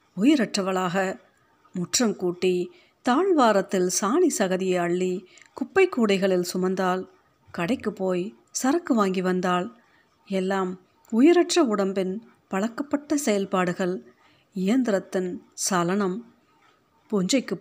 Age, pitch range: 50-69, 185-275 Hz